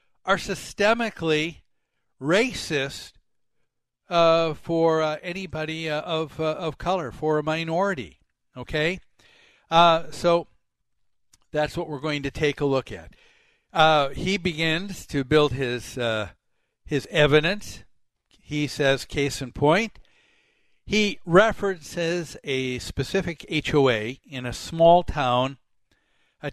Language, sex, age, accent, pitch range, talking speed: English, male, 60-79, American, 125-175 Hz, 115 wpm